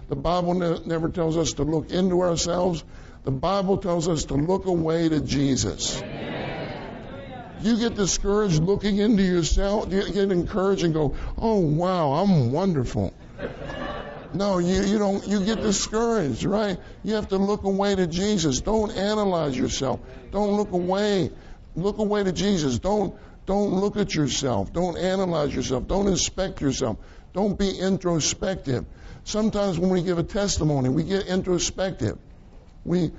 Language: English